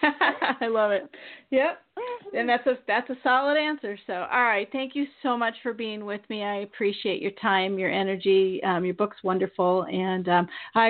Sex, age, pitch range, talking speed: female, 40-59, 180-215 Hz, 195 wpm